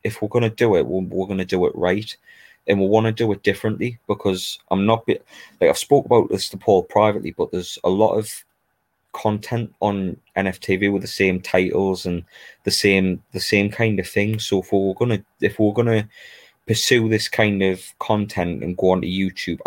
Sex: male